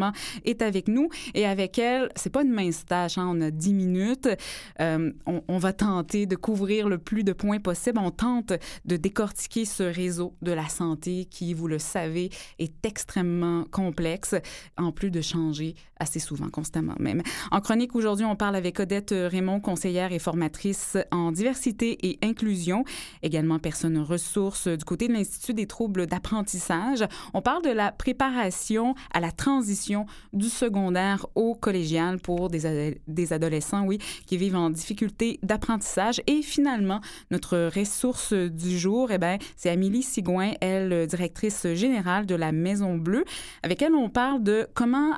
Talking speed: 165 wpm